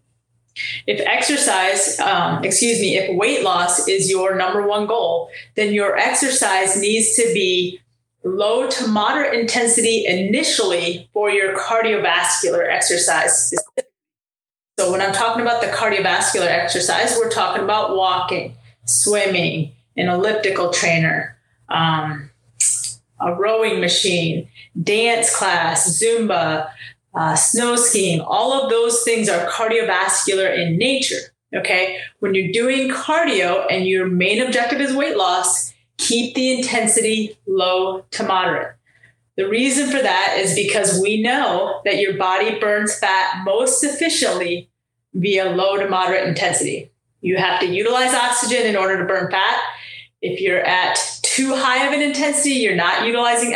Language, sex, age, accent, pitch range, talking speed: English, female, 30-49, American, 180-235 Hz, 135 wpm